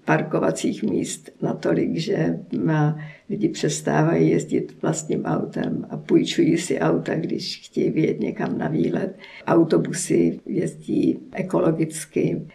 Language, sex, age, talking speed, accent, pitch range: Czech, female, 50-69, 105 wpm, native, 165-190 Hz